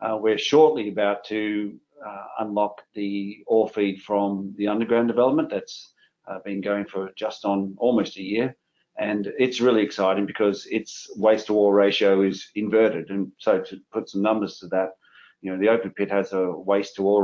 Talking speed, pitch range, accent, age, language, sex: 190 wpm, 95-105 Hz, Australian, 40-59, English, male